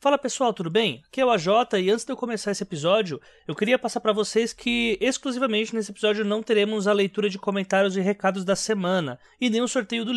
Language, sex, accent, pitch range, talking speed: Portuguese, male, Brazilian, 170-225 Hz, 235 wpm